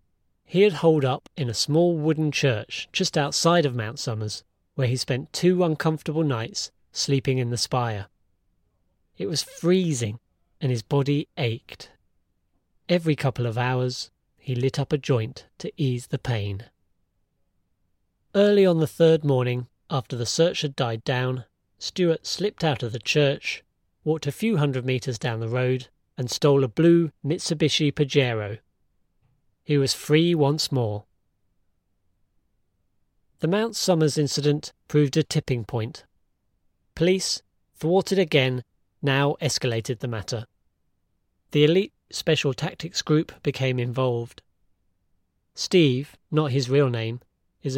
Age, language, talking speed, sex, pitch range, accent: 30-49, English, 135 wpm, male, 110-150 Hz, British